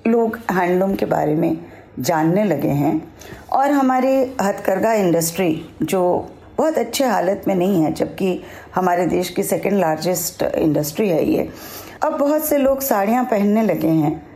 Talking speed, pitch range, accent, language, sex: 150 wpm, 170-235 Hz, native, Hindi, female